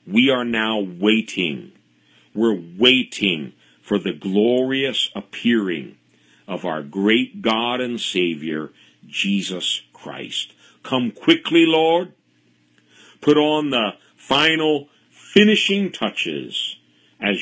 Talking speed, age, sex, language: 95 wpm, 50-69, male, English